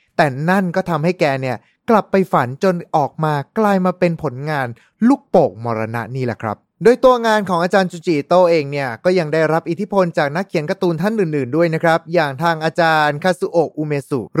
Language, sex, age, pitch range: Thai, male, 20-39, 120-175 Hz